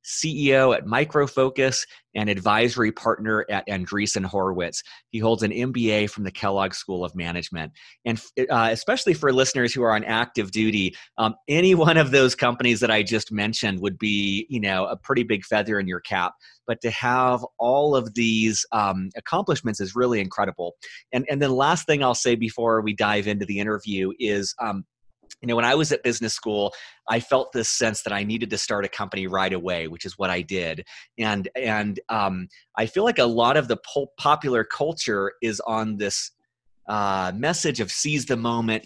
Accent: American